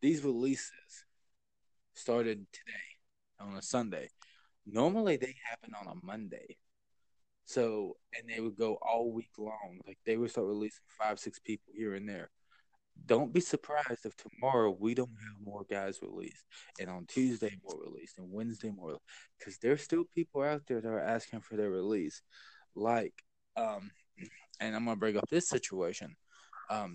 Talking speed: 165 wpm